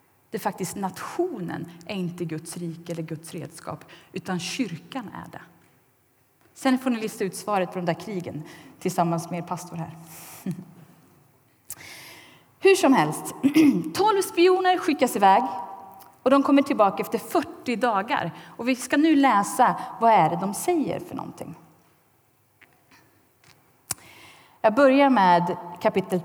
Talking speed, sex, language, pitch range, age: 135 wpm, female, Swedish, 175-275 Hz, 30-49